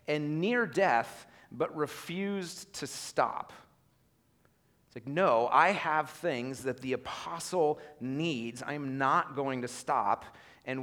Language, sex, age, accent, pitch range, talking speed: English, male, 30-49, American, 120-160 Hz, 125 wpm